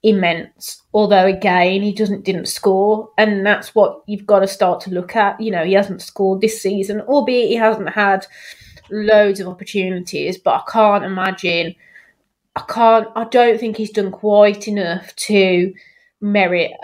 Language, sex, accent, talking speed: English, female, British, 165 wpm